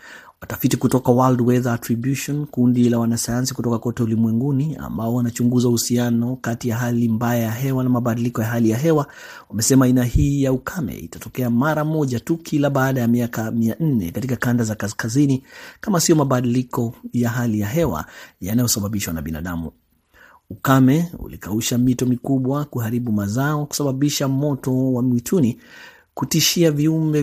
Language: Swahili